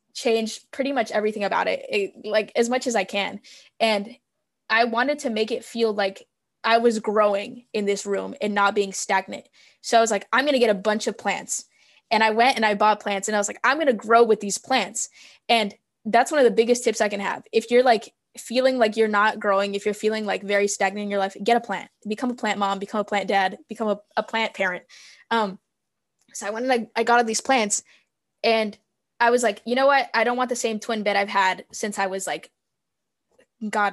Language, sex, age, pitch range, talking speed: English, female, 10-29, 205-240 Hz, 240 wpm